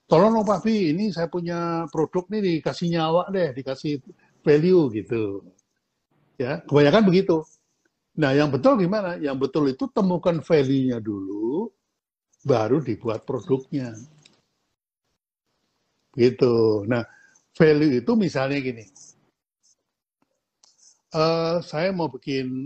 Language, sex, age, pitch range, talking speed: Indonesian, male, 60-79, 130-175 Hz, 105 wpm